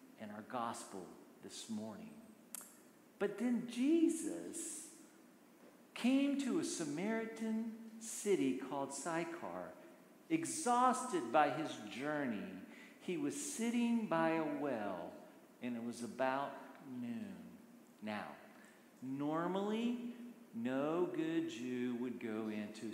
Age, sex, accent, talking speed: 50-69, male, American, 100 wpm